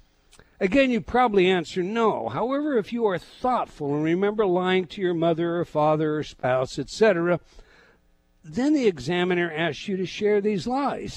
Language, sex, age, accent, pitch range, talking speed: English, male, 60-79, American, 135-210 Hz, 160 wpm